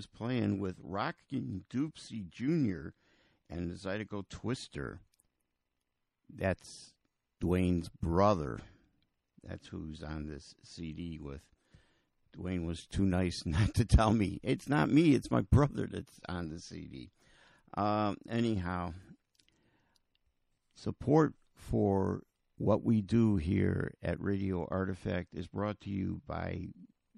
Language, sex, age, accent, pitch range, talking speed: English, male, 50-69, American, 90-125 Hz, 115 wpm